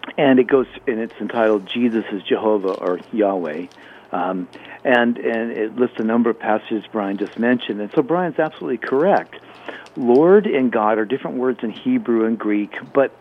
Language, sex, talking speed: English, male, 175 wpm